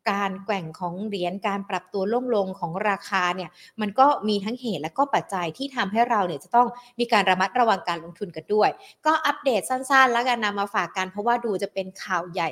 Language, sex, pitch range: Thai, female, 190-255 Hz